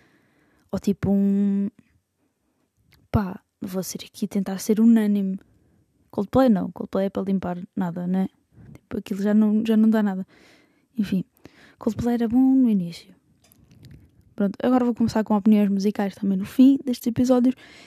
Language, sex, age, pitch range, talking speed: Portuguese, female, 20-39, 190-235 Hz, 150 wpm